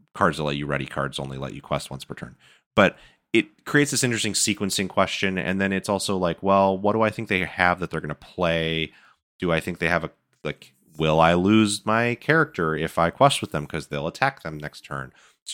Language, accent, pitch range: English, American, 75-95 Hz